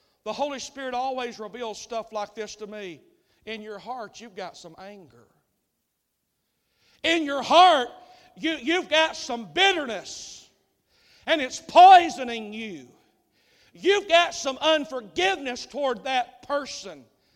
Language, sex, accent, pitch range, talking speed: English, male, American, 215-315 Hz, 120 wpm